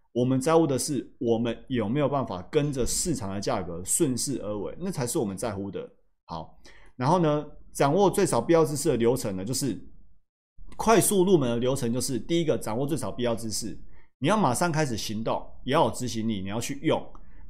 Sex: male